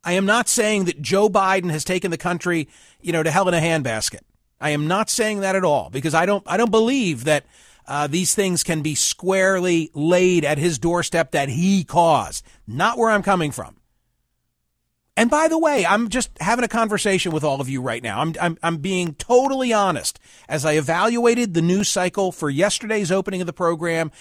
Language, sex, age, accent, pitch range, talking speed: English, male, 40-59, American, 165-225 Hz, 205 wpm